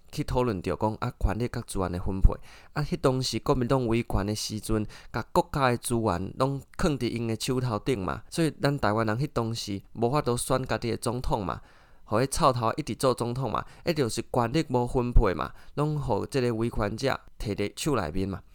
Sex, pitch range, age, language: male, 105-135 Hz, 20-39, Chinese